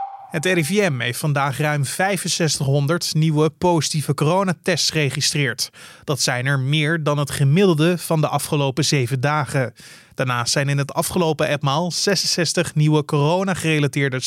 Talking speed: 130 wpm